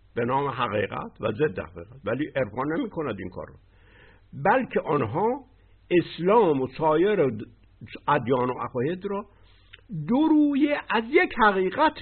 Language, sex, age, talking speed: Persian, male, 60-79, 130 wpm